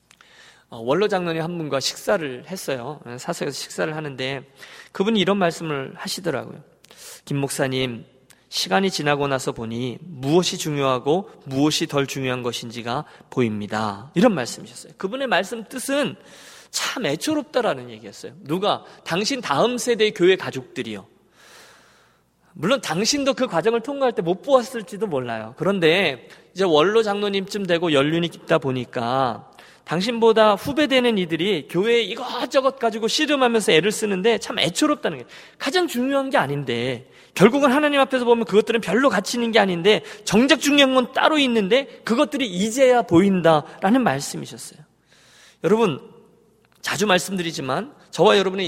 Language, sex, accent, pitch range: Korean, male, native, 145-240 Hz